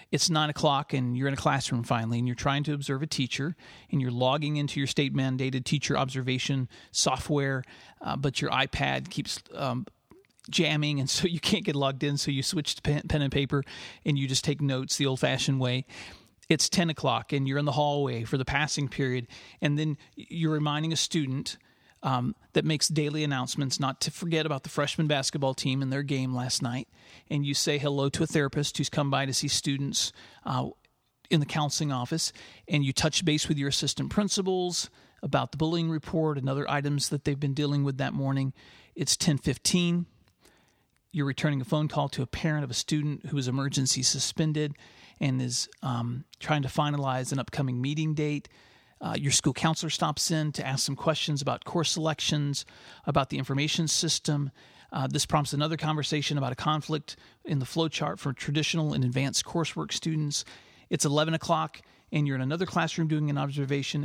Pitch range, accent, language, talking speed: 135-155 Hz, American, English, 190 wpm